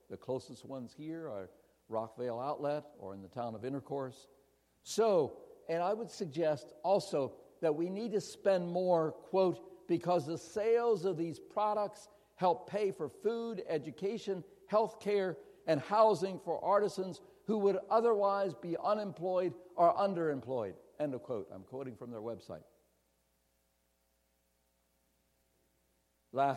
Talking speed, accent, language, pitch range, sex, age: 135 wpm, American, English, 115-180 Hz, male, 60-79